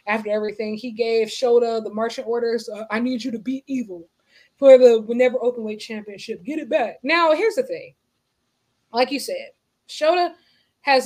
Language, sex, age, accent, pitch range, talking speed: English, female, 20-39, American, 225-295 Hz, 175 wpm